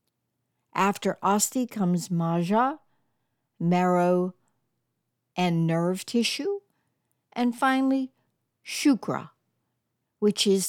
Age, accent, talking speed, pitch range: 60-79, American, 75 wpm, 165-230 Hz